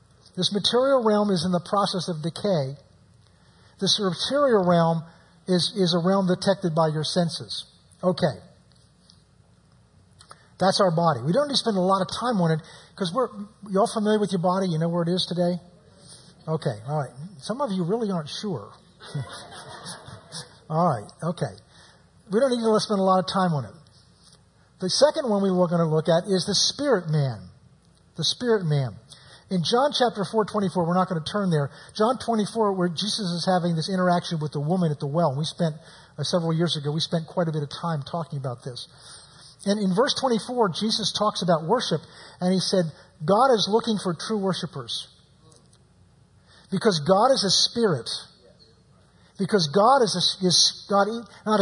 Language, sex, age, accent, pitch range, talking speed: English, male, 50-69, American, 155-205 Hz, 180 wpm